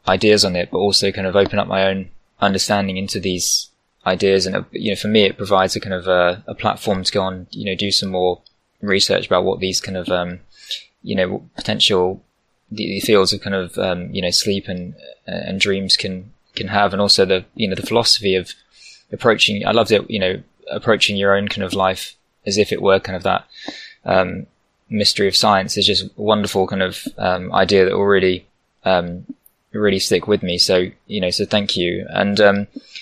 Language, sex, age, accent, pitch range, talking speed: English, male, 20-39, British, 95-105 Hz, 215 wpm